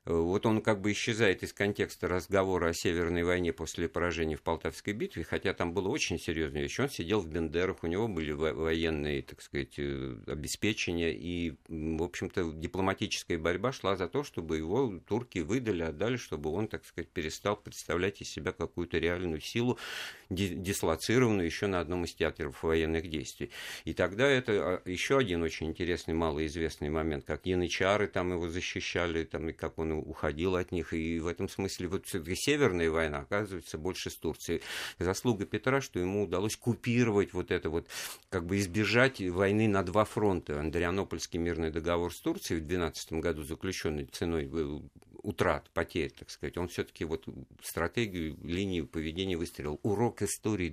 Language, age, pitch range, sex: Russian, 50-69, 80-100 Hz, male